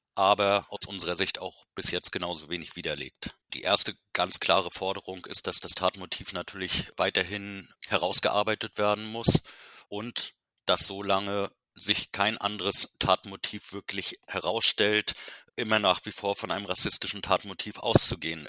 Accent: German